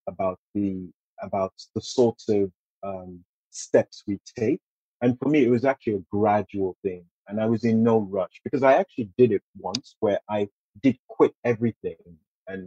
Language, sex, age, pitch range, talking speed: English, male, 30-49, 95-115 Hz, 175 wpm